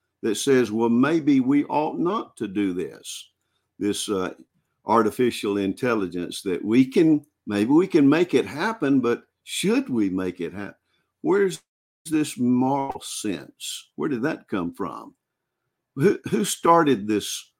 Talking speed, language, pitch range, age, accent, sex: 145 wpm, English, 100-140 Hz, 50-69, American, male